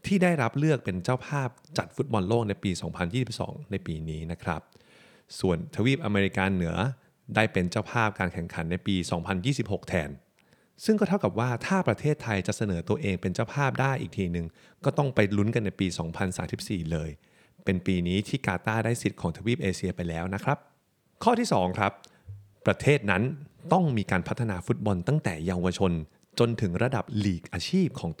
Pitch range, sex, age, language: 90-120 Hz, male, 30-49, Thai